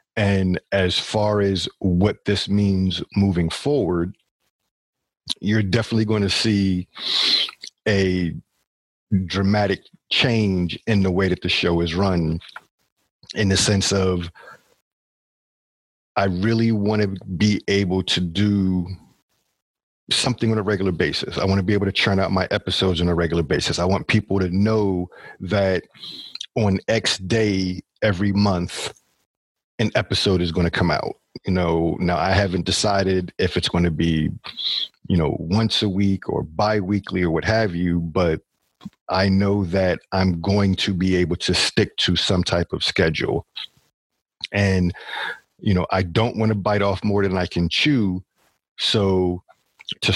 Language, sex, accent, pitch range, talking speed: English, male, American, 90-105 Hz, 150 wpm